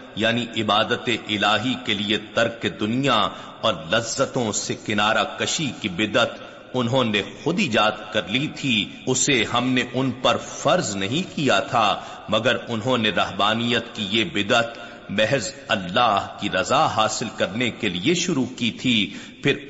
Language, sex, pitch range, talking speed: Urdu, male, 105-130 Hz, 145 wpm